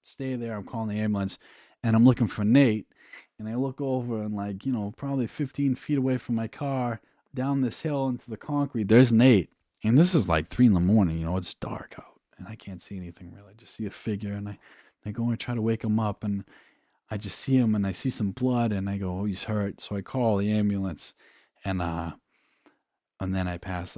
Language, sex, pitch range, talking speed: English, male, 95-125 Hz, 240 wpm